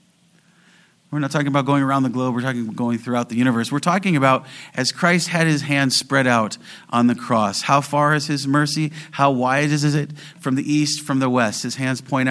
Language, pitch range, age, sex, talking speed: English, 130-175 Hz, 40-59, male, 225 wpm